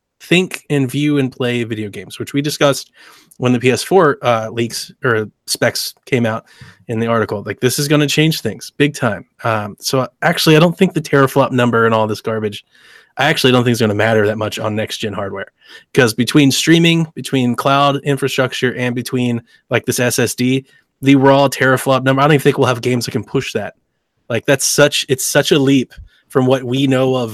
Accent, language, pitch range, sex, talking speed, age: American, English, 120-150 Hz, male, 210 wpm, 20-39